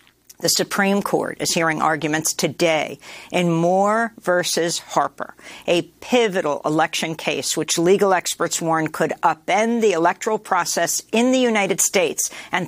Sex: female